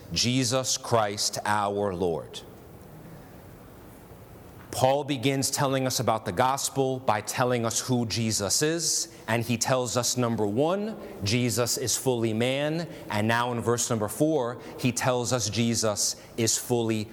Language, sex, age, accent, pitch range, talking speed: English, male, 30-49, American, 110-135 Hz, 135 wpm